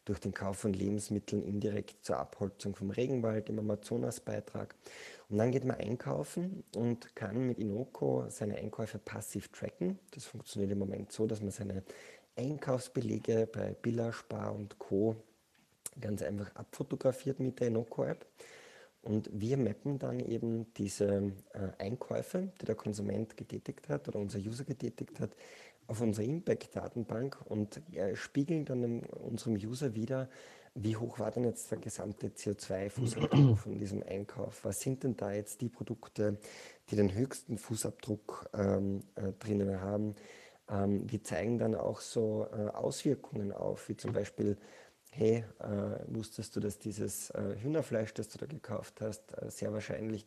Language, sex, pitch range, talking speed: German, male, 105-120 Hz, 150 wpm